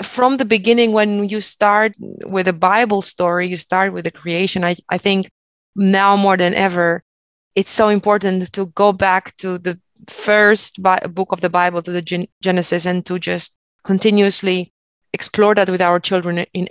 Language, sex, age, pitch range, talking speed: English, female, 20-39, 185-215 Hz, 180 wpm